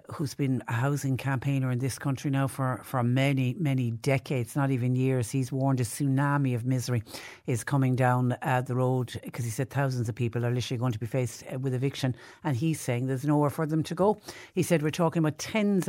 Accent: Irish